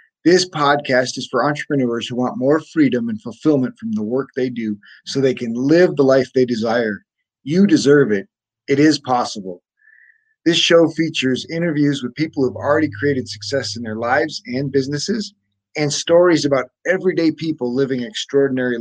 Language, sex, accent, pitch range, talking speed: English, male, American, 120-150 Hz, 165 wpm